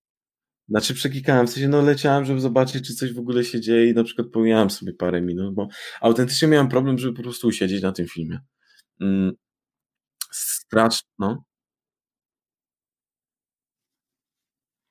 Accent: native